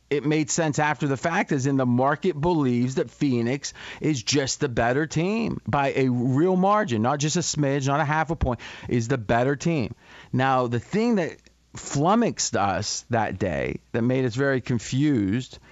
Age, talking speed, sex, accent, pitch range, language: 40-59, 185 wpm, male, American, 125-155 Hz, English